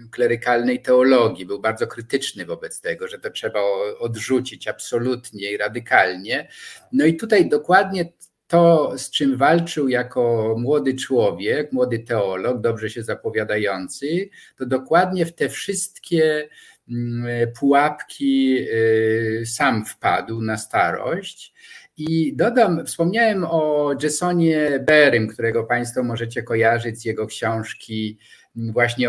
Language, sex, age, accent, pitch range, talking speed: Polish, male, 50-69, native, 115-170 Hz, 110 wpm